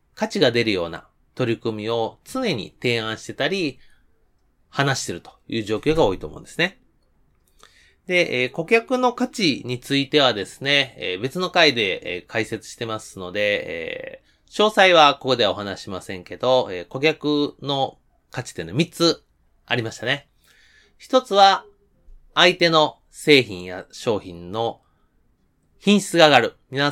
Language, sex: Japanese, male